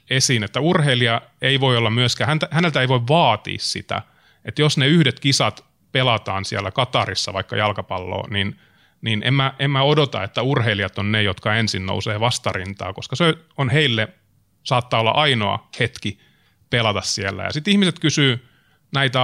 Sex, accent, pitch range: male, native, 110-140 Hz